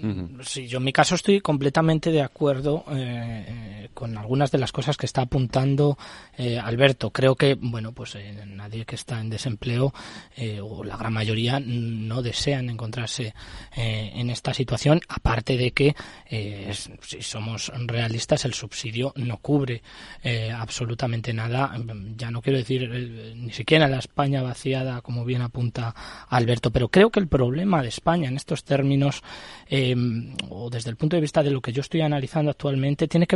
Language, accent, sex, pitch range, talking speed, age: Spanish, Spanish, male, 120-150 Hz, 175 wpm, 20-39